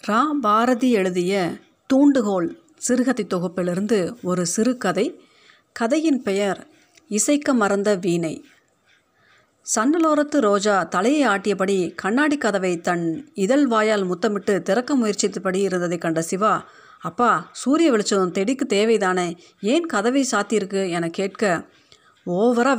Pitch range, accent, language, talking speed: 185-245 Hz, native, Tamil, 90 wpm